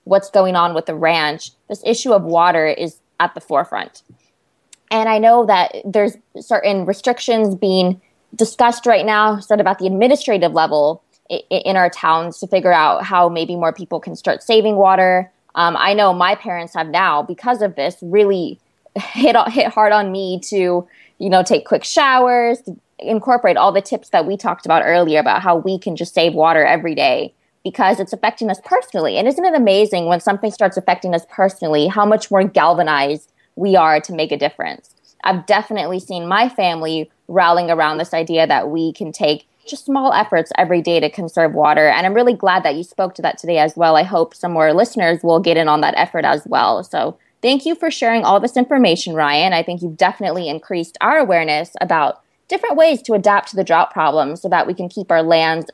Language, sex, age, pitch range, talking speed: English, female, 20-39, 165-220 Hz, 205 wpm